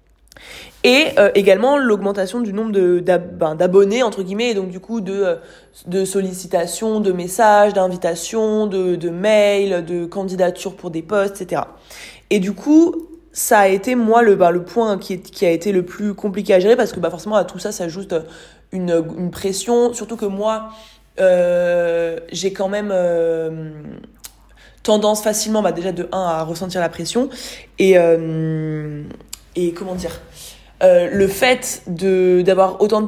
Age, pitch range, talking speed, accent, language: 20-39, 180-220 Hz, 170 wpm, French, French